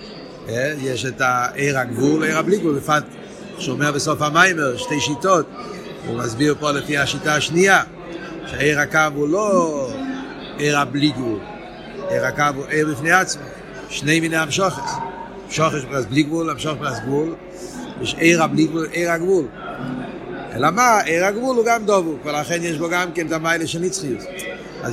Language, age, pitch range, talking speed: Hebrew, 60-79, 145-180 Hz, 130 wpm